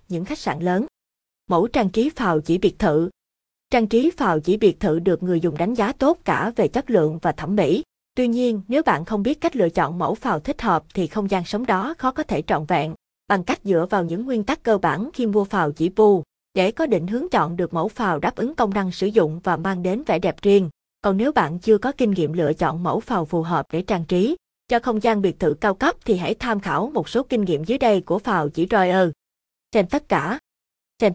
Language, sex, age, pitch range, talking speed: Vietnamese, female, 20-39, 175-230 Hz, 245 wpm